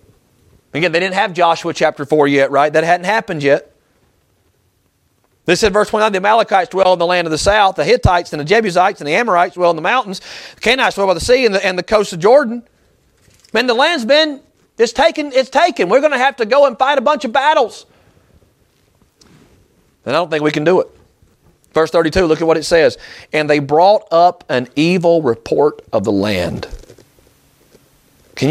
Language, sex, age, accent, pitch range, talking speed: English, male, 30-49, American, 130-220 Hz, 200 wpm